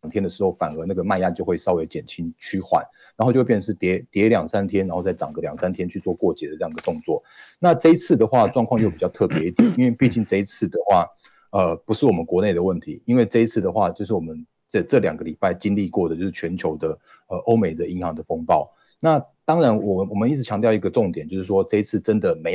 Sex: male